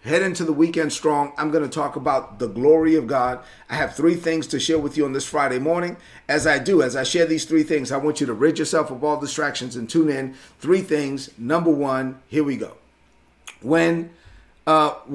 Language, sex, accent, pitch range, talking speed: English, male, American, 130-165 Hz, 220 wpm